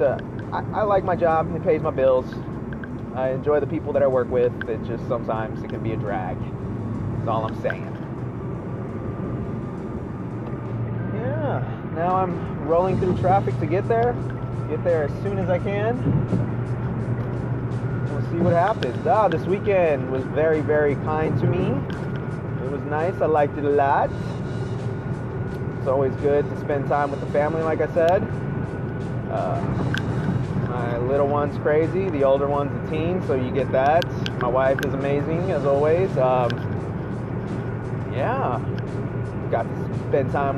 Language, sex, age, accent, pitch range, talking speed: English, male, 30-49, American, 125-150 Hz, 155 wpm